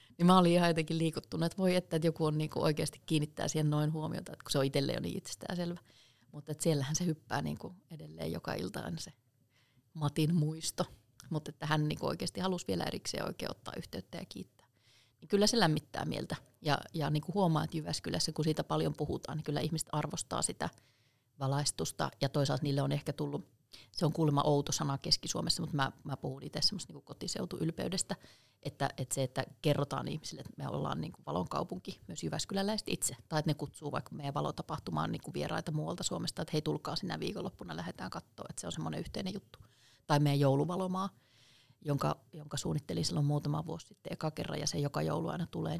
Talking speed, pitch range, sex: 195 wpm, 135-165 Hz, female